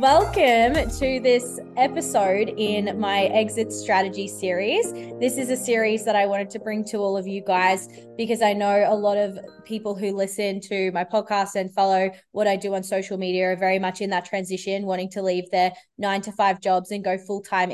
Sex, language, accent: female, English, Australian